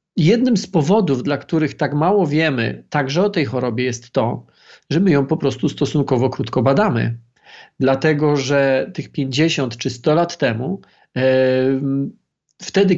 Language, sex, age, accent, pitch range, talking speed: Polish, male, 40-59, native, 135-175 Hz, 145 wpm